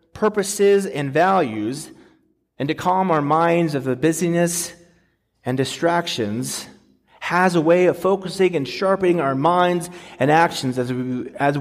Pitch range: 135-185 Hz